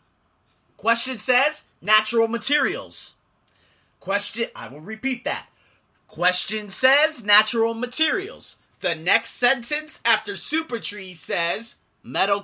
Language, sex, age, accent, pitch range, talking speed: English, male, 30-49, American, 175-235 Hz, 100 wpm